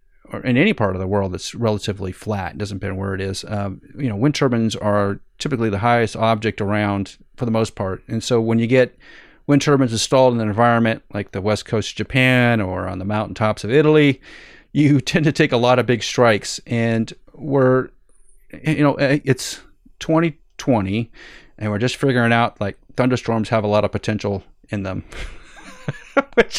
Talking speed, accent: 190 wpm, American